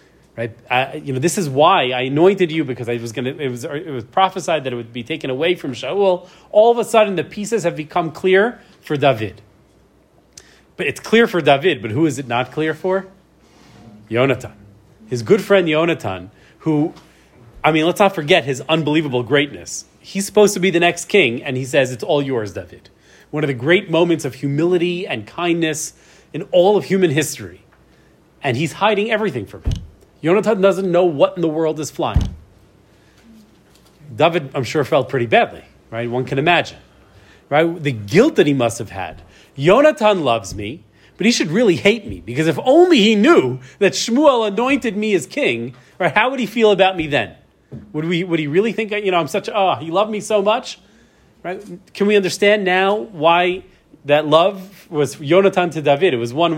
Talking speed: 195 wpm